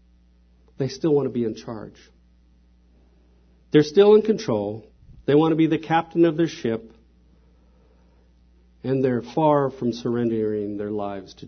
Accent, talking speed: American, 145 wpm